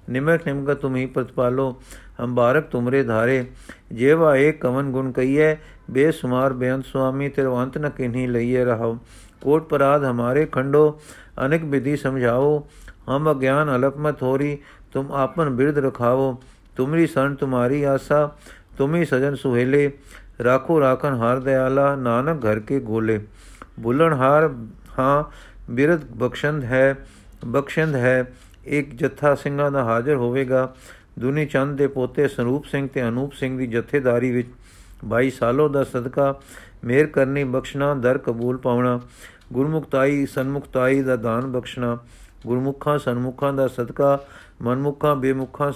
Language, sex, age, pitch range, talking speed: Punjabi, male, 50-69, 125-145 Hz, 130 wpm